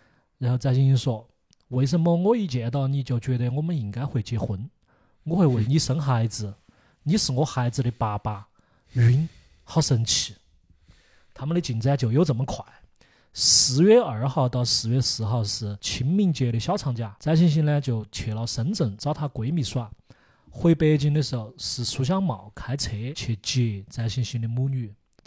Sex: male